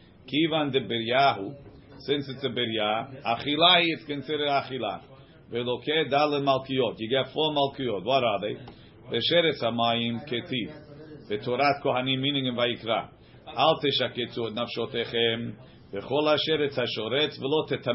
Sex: male